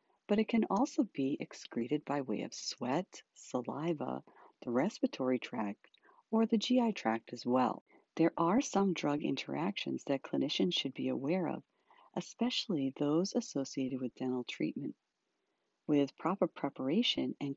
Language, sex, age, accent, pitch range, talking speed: English, female, 50-69, American, 135-195 Hz, 140 wpm